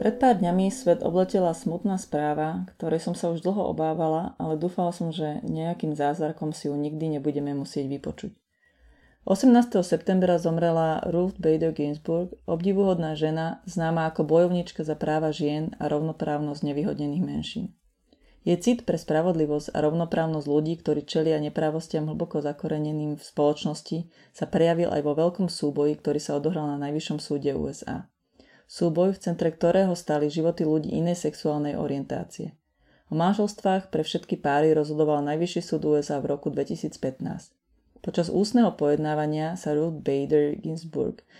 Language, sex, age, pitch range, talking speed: Slovak, female, 30-49, 150-175 Hz, 140 wpm